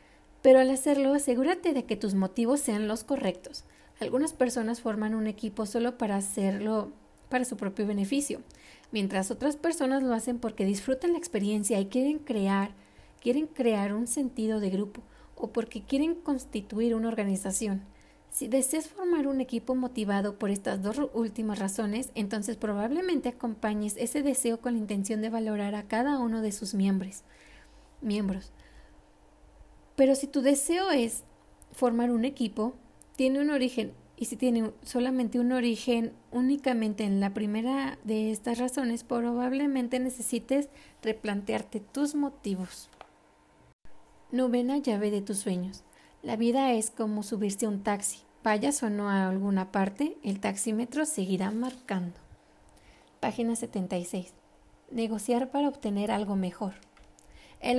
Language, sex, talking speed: Spanish, female, 140 wpm